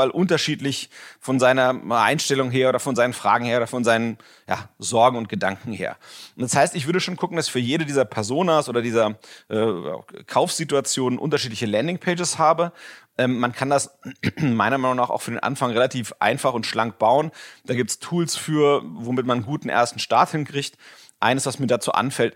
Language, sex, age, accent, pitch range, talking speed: German, male, 30-49, German, 120-145 Hz, 190 wpm